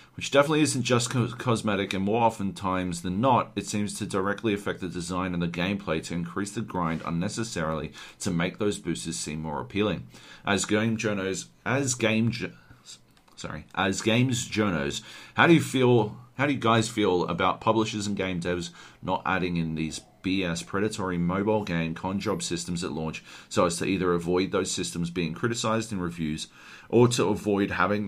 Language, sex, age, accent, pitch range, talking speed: English, male, 40-59, Australian, 85-110 Hz, 175 wpm